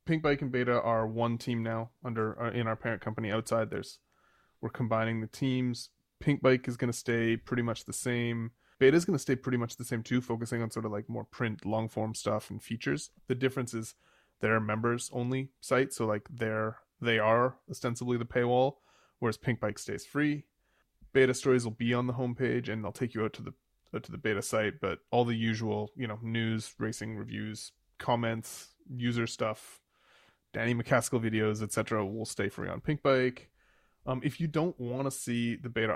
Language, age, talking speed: English, 20-39, 205 wpm